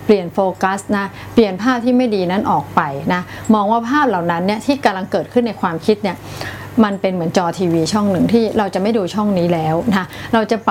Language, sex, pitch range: Thai, female, 180-235 Hz